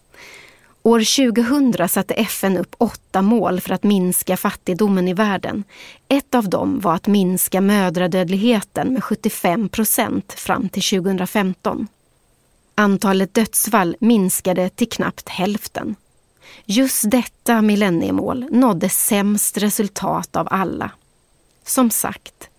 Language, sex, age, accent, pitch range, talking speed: English, female, 30-49, Swedish, 190-235 Hz, 110 wpm